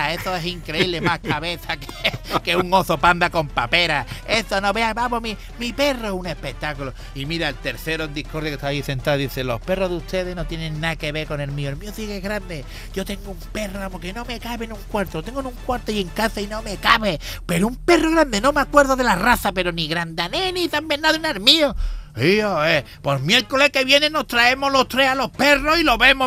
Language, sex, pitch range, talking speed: Spanish, male, 145-215 Hz, 240 wpm